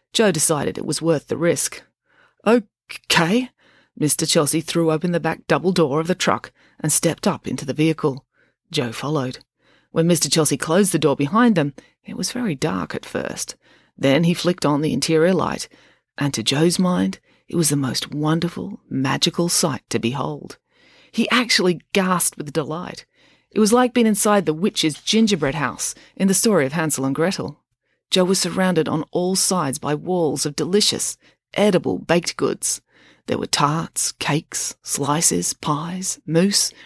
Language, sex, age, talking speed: English, female, 30-49, 165 wpm